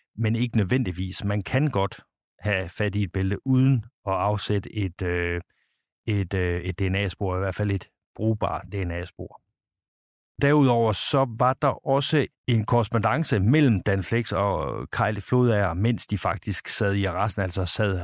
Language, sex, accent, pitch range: Danish, male, native, 95-120 Hz